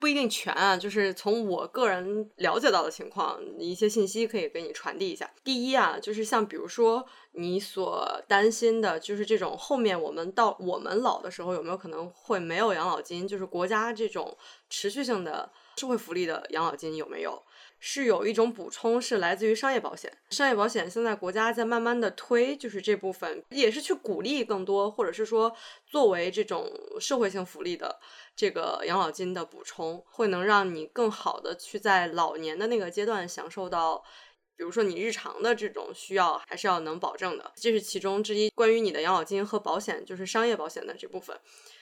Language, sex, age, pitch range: English, female, 20-39, 195-245 Hz